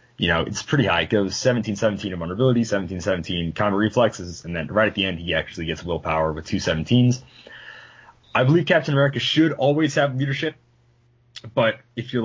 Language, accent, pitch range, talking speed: English, American, 95-120 Hz, 190 wpm